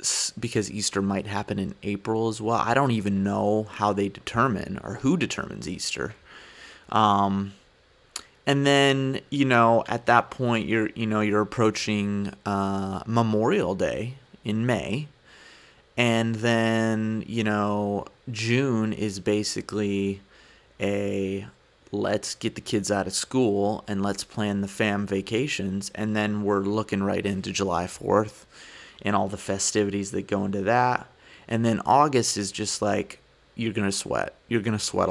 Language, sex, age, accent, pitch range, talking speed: English, male, 30-49, American, 100-120 Hz, 150 wpm